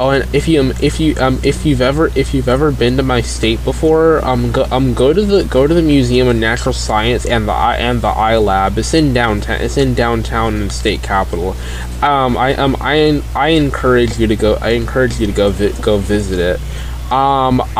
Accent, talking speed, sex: American, 225 wpm, male